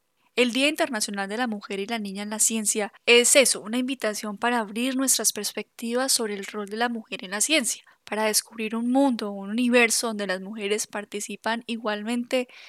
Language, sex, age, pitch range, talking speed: Spanish, female, 10-29, 200-230 Hz, 190 wpm